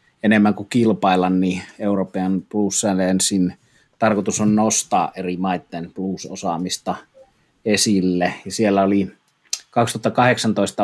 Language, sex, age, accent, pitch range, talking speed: Finnish, male, 30-49, native, 95-105 Hz, 95 wpm